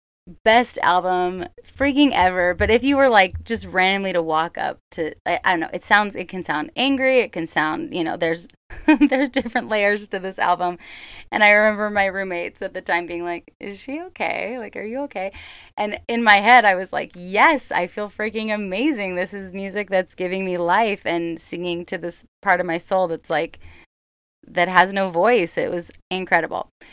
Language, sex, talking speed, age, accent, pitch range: English, female, 200 wpm, 20-39, American, 170-210 Hz